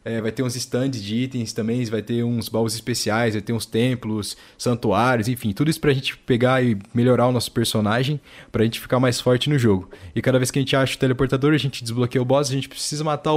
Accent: Brazilian